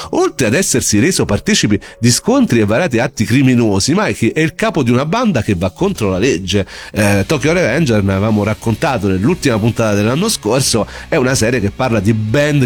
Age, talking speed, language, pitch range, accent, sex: 40-59, 190 wpm, Italian, 105-140 Hz, native, male